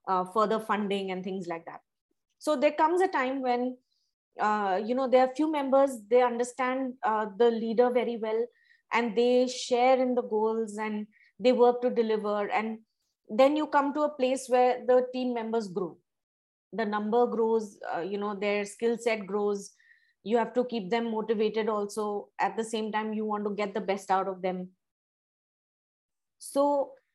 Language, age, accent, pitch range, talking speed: English, 20-39, Indian, 220-275 Hz, 180 wpm